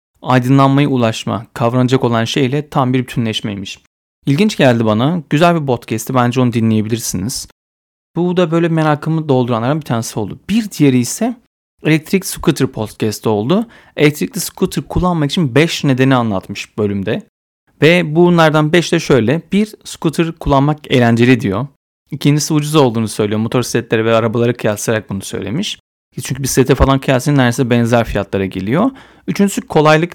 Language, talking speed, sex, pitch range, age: Turkish, 135 wpm, male, 115-155 Hz, 40-59